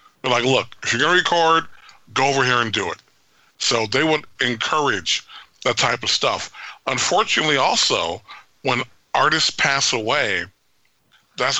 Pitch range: 125-150 Hz